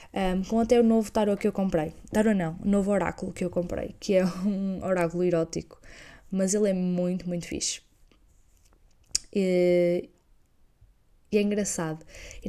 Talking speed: 160 wpm